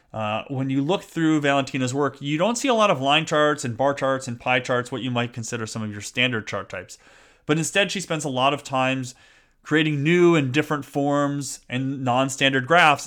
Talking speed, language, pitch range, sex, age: 215 wpm, English, 115-155 Hz, male, 30-49